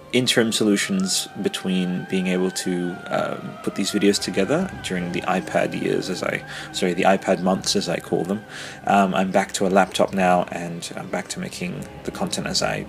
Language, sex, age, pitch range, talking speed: English, male, 30-49, 90-110 Hz, 190 wpm